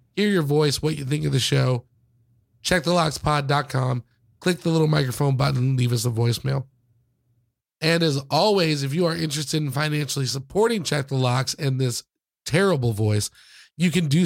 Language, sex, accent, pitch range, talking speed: English, male, American, 130-165 Hz, 165 wpm